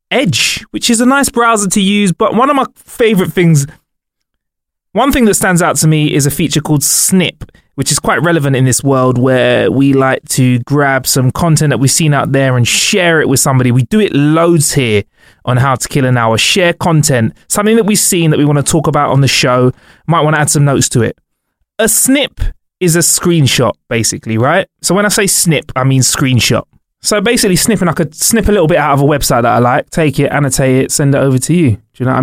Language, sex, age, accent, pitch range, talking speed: English, male, 20-39, British, 125-170 Hz, 240 wpm